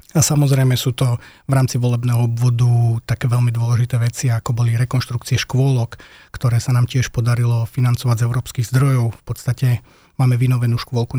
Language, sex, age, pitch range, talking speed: Slovak, male, 30-49, 120-130 Hz, 160 wpm